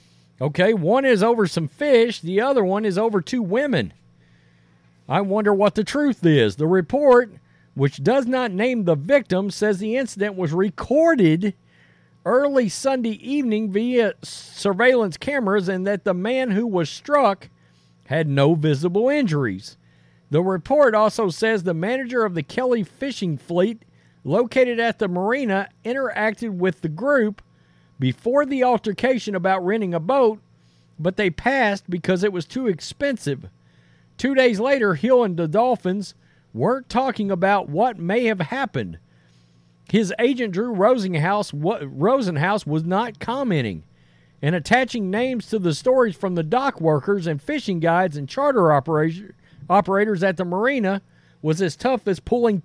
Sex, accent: male, American